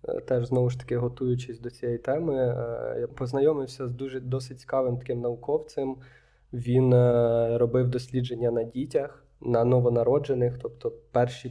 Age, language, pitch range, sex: 20-39, Ukrainian, 120-140 Hz, male